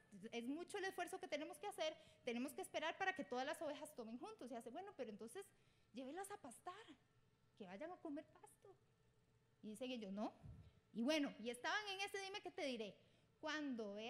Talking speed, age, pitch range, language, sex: 200 wpm, 30-49, 235-330 Hz, Spanish, female